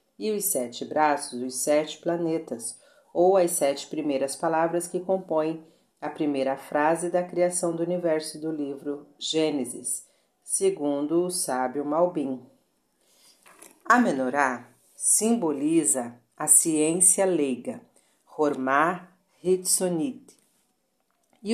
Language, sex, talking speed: Portuguese, female, 100 wpm